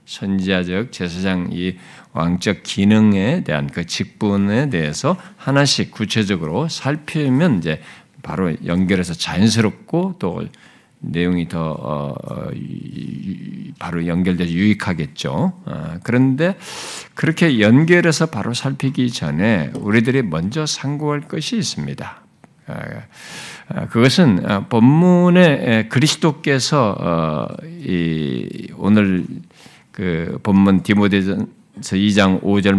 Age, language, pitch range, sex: 50-69, Korean, 95-160 Hz, male